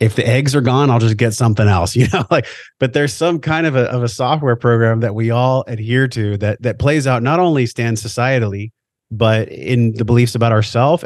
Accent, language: American, English